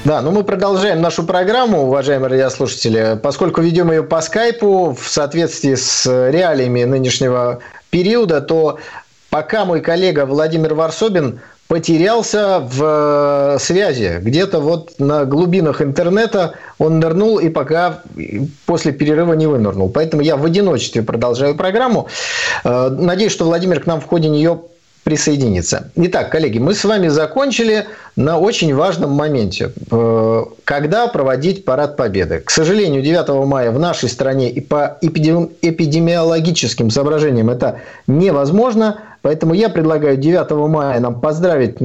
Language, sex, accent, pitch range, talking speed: Russian, male, native, 135-180 Hz, 130 wpm